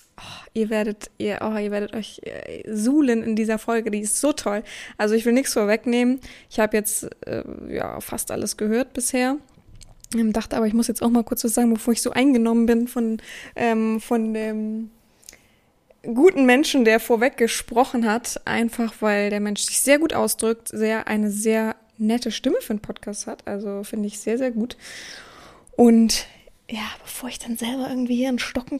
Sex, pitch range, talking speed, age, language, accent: female, 215-245 Hz, 180 wpm, 20-39, German, German